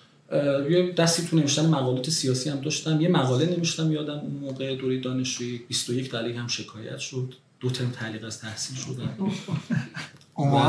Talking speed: 155 wpm